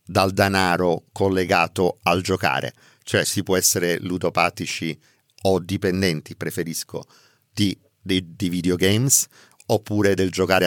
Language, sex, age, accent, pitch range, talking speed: Italian, male, 50-69, native, 90-120 Hz, 110 wpm